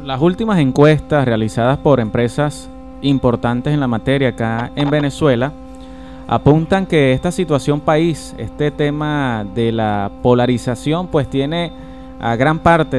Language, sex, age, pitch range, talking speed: Spanish, male, 30-49, 125-155 Hz, 130 wpm